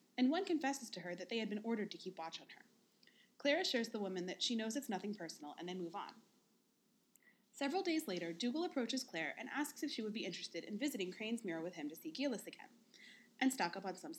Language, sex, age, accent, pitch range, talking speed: English, female, 30-49, American, 180-270 Hz, 240 wpm